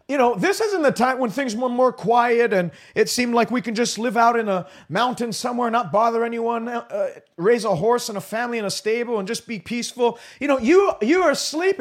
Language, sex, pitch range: English, male, 230-295 Hz